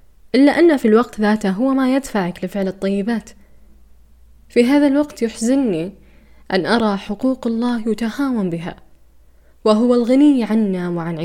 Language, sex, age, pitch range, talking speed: Arabic, female, 10-29, 175-230 Hz, 130 wpm